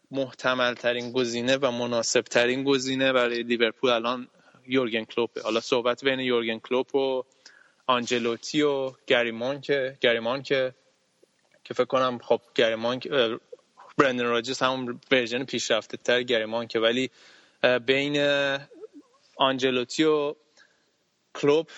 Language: Persian